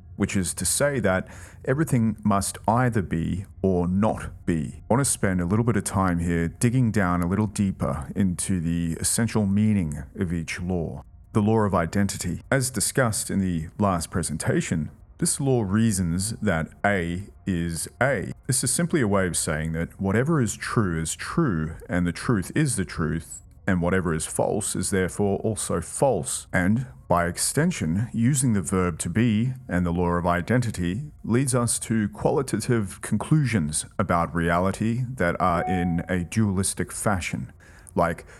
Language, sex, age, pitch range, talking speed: English, male, 30-49, 85-115 Hz, 165 wpm